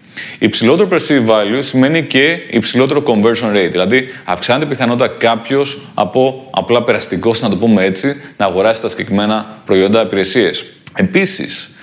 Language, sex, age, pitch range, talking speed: Greek, male, 30-49, 110-145 Hz, 130 wpm